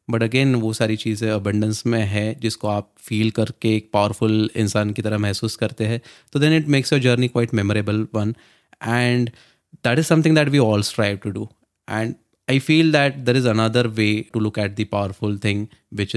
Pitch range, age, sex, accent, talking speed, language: 100-120 Hz, 20-39, male, native, 200 wpm, Hindi